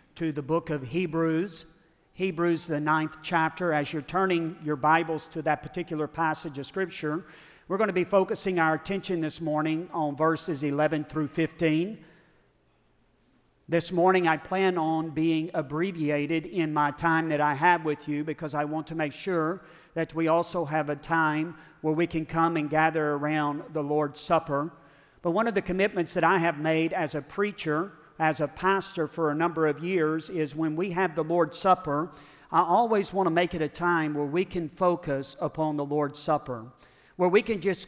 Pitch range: 150-175 Hz